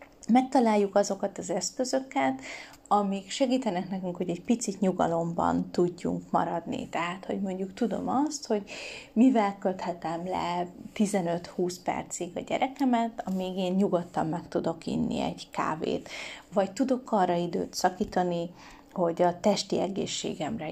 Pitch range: 175-235 Hz